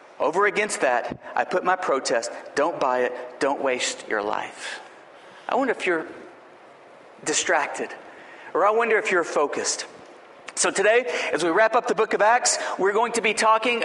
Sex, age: male, 40-59